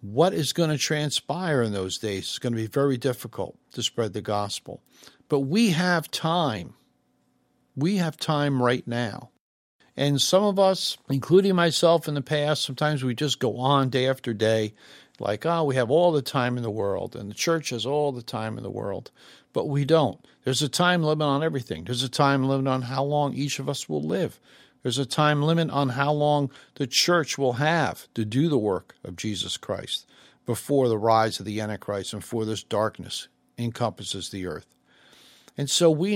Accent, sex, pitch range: American, male, 115-150 Hz